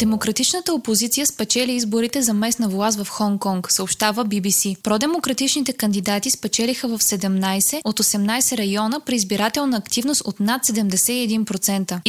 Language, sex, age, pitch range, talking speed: Bulgarian, female, 20-39, 205-250 Hz, 130 wpm